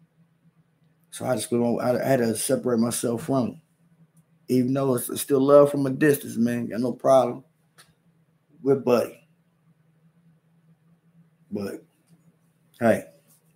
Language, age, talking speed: English, 20-39, 125 wpm